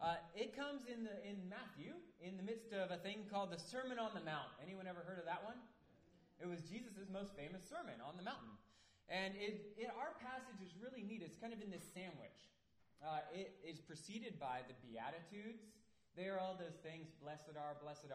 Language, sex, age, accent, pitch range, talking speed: English, male, 20-39, American, 135-200 Hz, 210 wpm